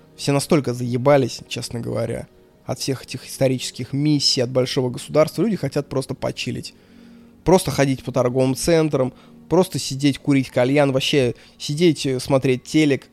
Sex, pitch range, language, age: male, 125-150 Hz, Russian, 20-39